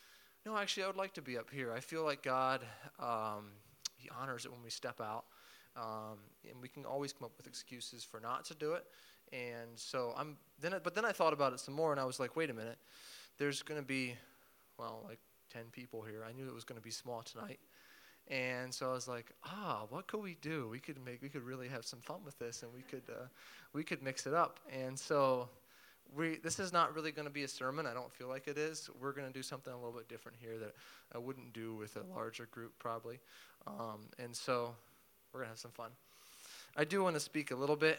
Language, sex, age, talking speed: English, male, 20-39, 250 wpm